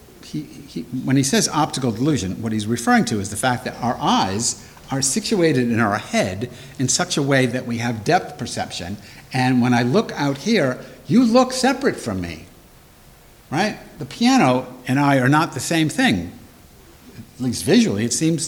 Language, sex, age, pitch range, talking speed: English, male, 60-79, 110-140 Hz, 185 wpm